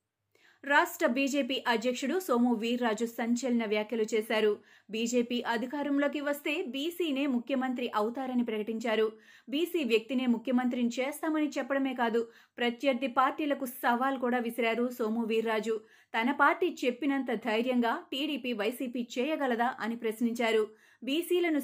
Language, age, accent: Telugu, 30-49, native